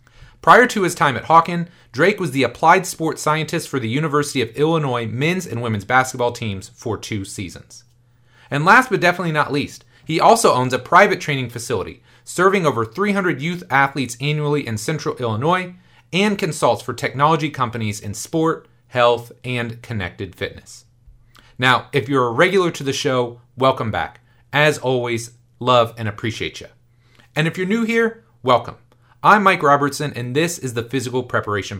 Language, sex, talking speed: English, male, 170 wpm